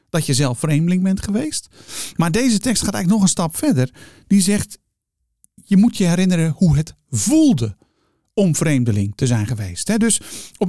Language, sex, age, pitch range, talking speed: Dutch, male, 50-69, 145-195 Hz, 175 wpm